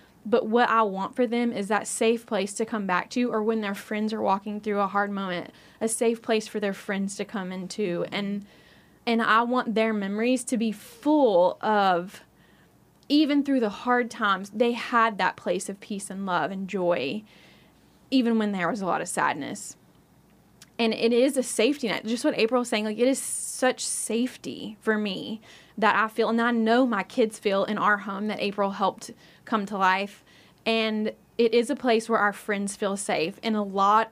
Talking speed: 205 wpm